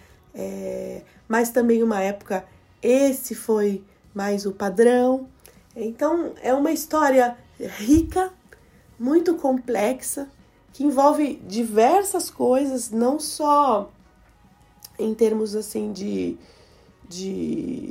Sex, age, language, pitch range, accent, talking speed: female, 20-39, Portuguese, 200-265 Hz, Brazilian, 85 wpm